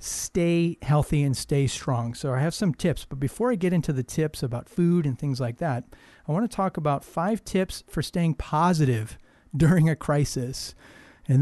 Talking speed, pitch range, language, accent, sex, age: 195 wpm, 130-160 Hz, English, American, male, 40-59